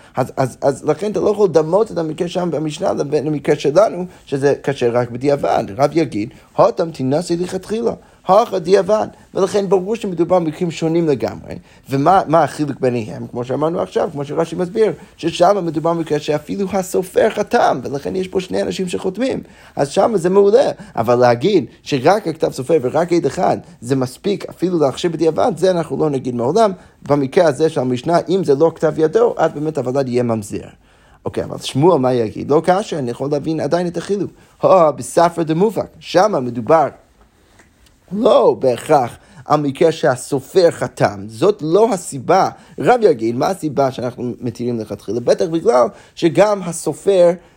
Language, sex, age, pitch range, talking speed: Hebrew, male, 30-49, 135-185 Hz, 155 wpm